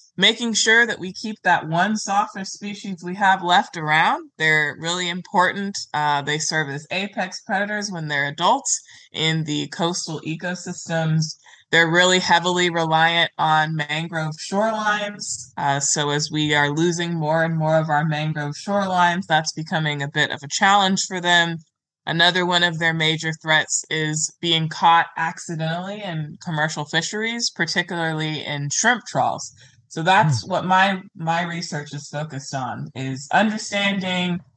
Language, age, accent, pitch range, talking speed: English, 20-39, American, 155-185 Hz, 150 wpm